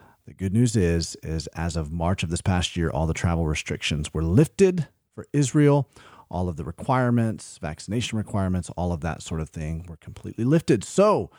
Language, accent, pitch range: English, American, 90-120 Hz